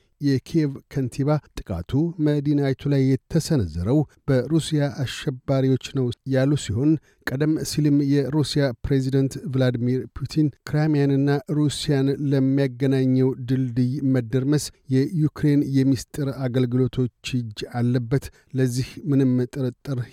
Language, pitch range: Amharic, 125-140 Hz